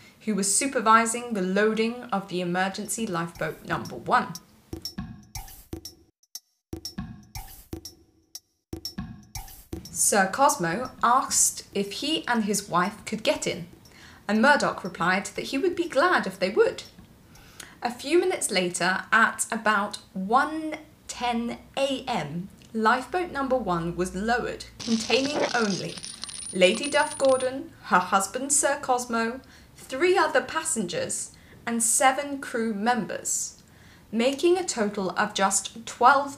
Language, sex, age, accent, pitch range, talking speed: English, female, 20-39, British, 195-260 Hz, 110 wpm